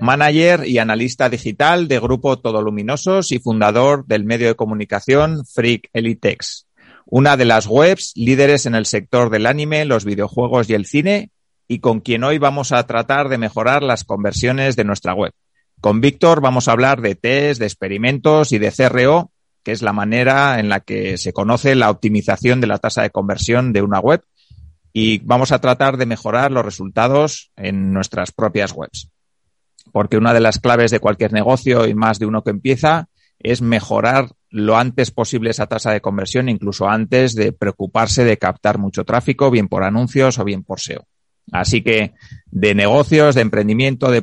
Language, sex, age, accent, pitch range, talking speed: Spanish, male, 30-49, Spanish, 105-130 Hz, 180 wpm